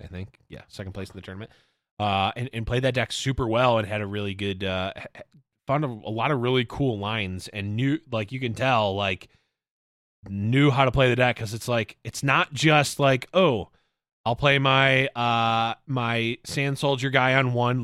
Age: 20-39